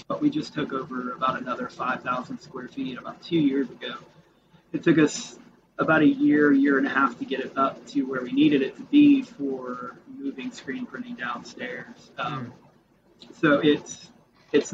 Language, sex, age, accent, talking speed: English, male, 30-49, American, 180 wpm